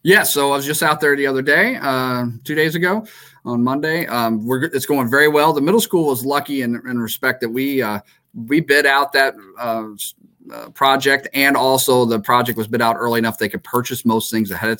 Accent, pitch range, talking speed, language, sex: American, 110-135 Hz, 225 wpm, English, male